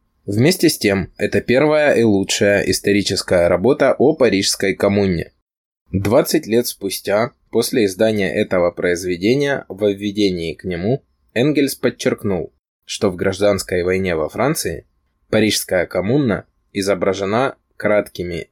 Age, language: 20-39, Russian